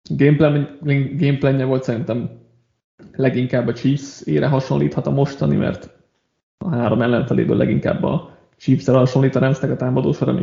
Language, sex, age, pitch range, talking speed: Hungarian, male, 20-39, 120-145 Hz, 155 wpm